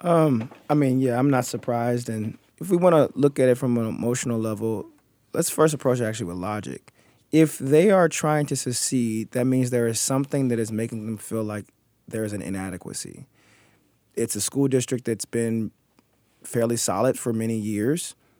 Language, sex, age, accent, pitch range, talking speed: English, male, 20-39, American, 110-135 Hz, 190 wpm